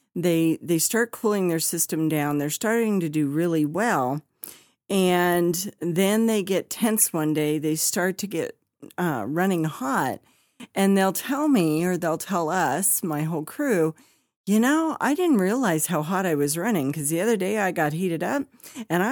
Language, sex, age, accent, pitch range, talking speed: English, female, 50-69, American, 155-200 Hz, 180 wpm